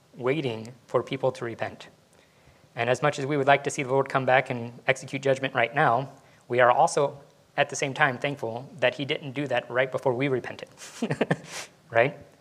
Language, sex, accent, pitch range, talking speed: English, male, American, 130-150 Hz, 200 wpm